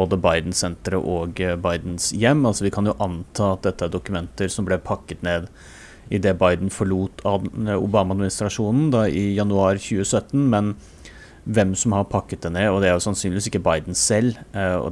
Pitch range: 90-105 Hz